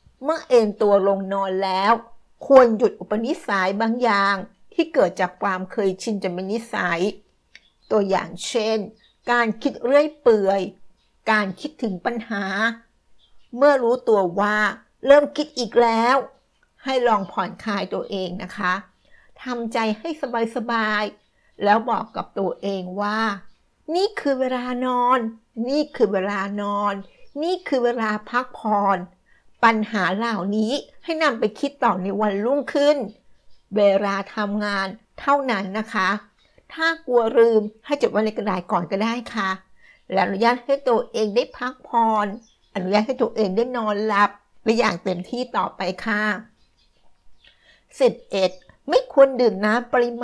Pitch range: 200-245 Hz